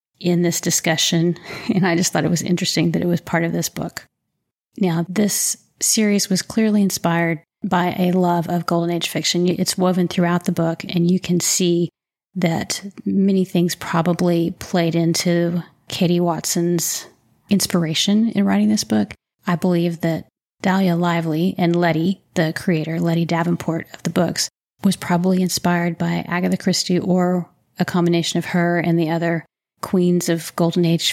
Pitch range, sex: 170-185 Hz, female